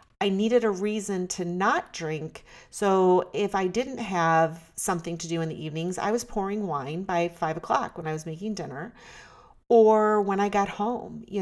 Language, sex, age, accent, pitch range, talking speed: English, female, 40-59, American, 165-205 Hz, 190 wpm